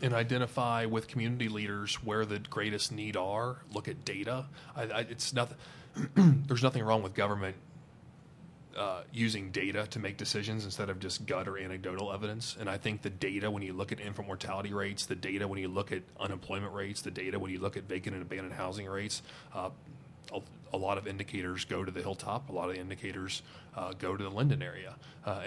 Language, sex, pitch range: English, male, 95-110 Hz